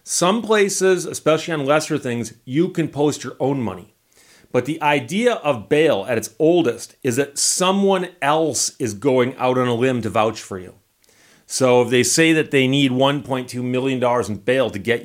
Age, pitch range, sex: 40-59, 125-155 Hz, male